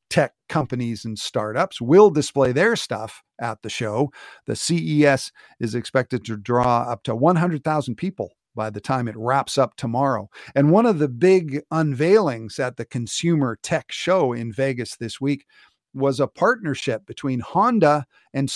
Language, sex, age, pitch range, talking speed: English, male, 50-69, 120-160 Hz, 160 wpm